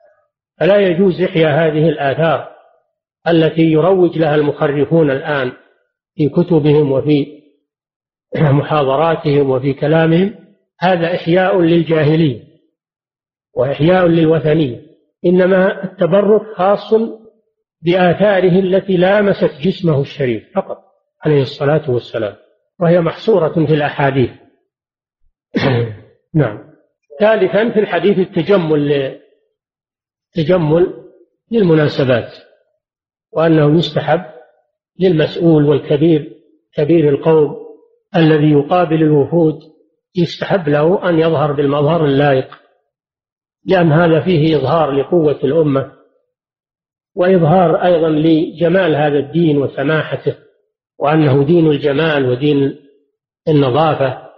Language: Arabic